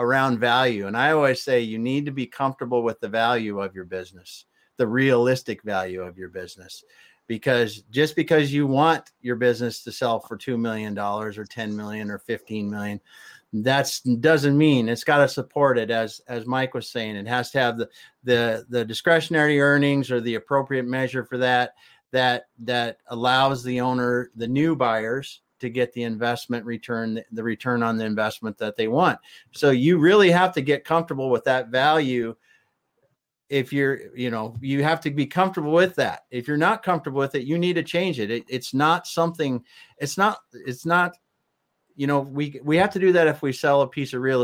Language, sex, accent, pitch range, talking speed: English, male, American, 120-150 Hz, 195 wpm